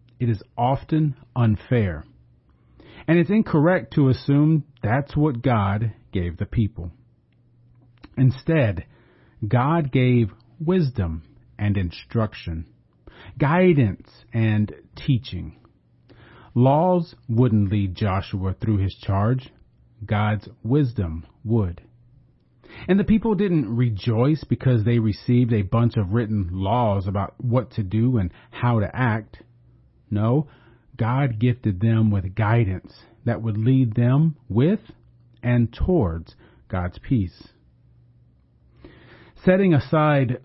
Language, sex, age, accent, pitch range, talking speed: English, male, 40-59, American, 105-130 Hz, 105 wpm